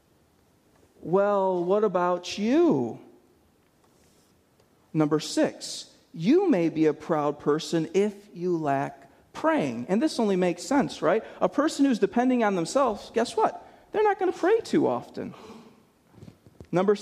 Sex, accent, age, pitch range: male, American, 40-59, 150-210 Hz